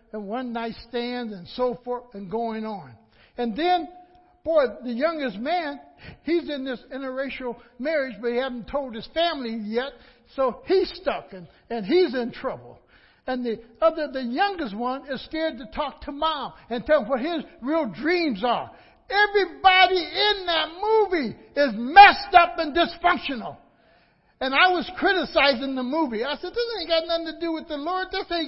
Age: 60-79